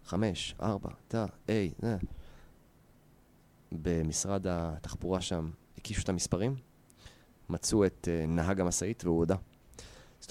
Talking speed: 115 wpm